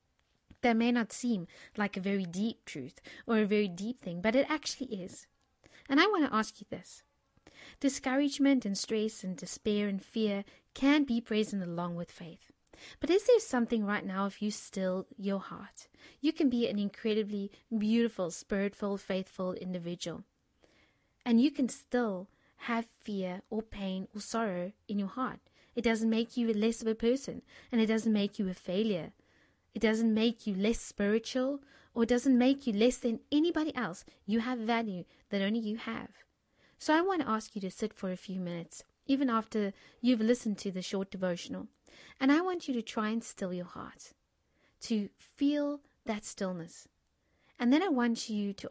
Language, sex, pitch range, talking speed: English, female, 200-250 Hz, 180 wpm